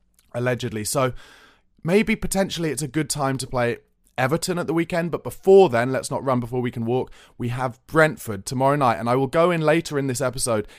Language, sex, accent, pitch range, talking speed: English, male, British, 120-155 Hz, 210 wpm